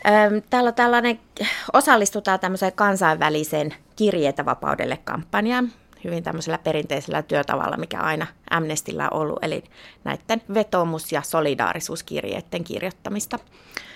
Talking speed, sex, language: 100 wpm, female, Finnish